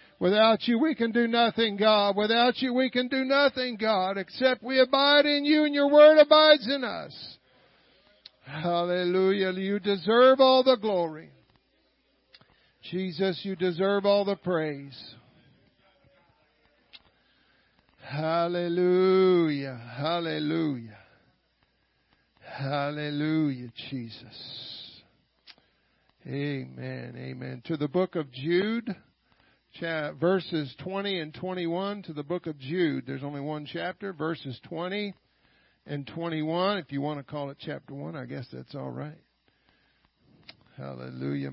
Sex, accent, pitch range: male, American, 140-195 Hz